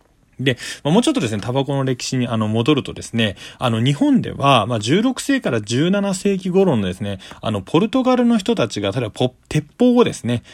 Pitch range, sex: 110-180 Hz, male